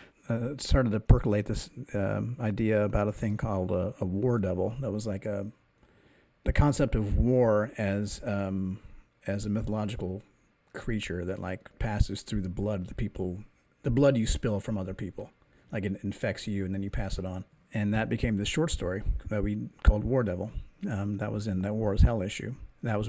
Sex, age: male, 40-59